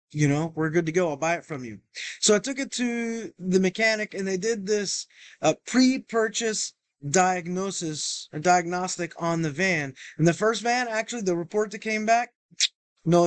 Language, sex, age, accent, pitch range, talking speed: English, male, 20-39, American, 165-210 Hz, 190 wpm